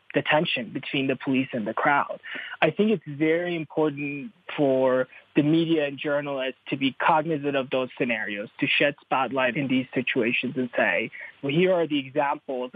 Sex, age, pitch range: male, 20-39, 130-160 Hz